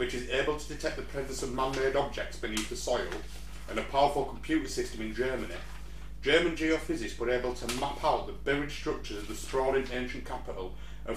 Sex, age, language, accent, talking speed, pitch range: male, 30-49, English, British, 195 wpm, 120-150 Hz